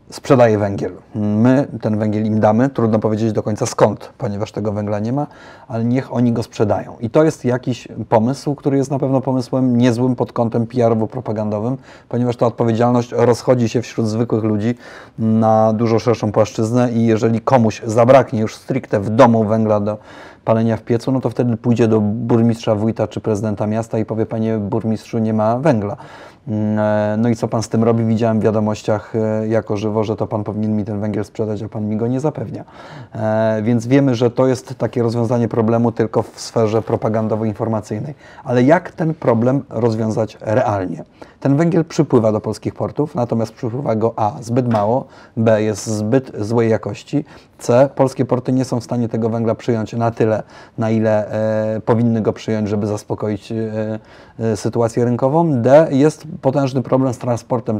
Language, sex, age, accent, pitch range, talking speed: Polish, male, 30-49, native, 110-125 Hz, 175 wpm